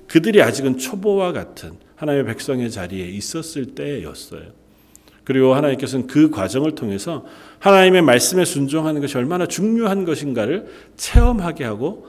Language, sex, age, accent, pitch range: Korean, male, 40-59, native, 115-155 Hz